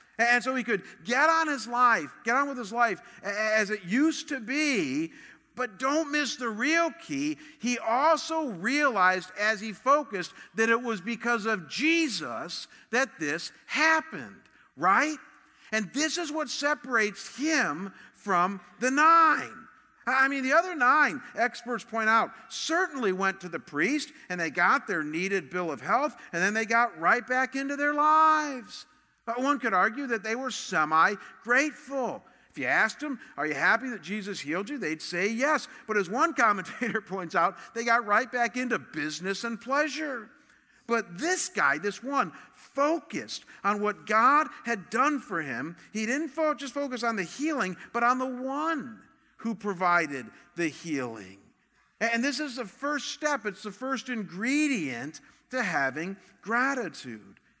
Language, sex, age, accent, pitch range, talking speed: English, male, 50-69, American, 210-285 Hz, 160 wpm